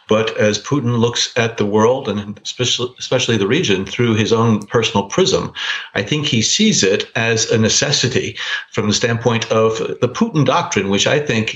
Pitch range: 110-135 Hz